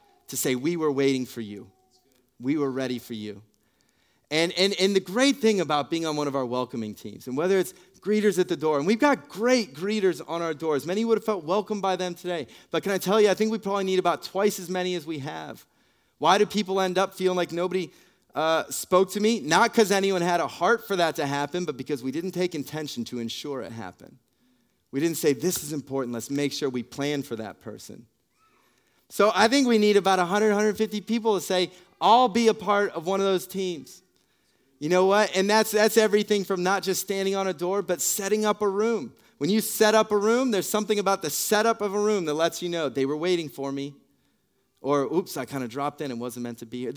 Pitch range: 145-205 Hz